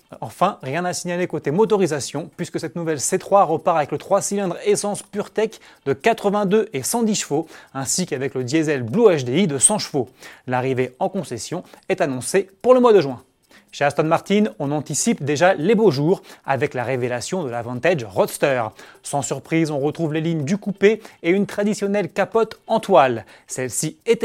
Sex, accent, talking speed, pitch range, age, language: male, French, 180 wpm, 145-200 Hz, 30-49, French